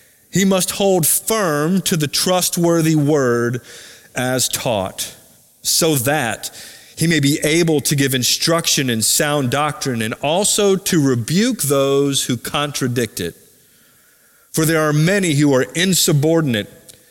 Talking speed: 130 wpm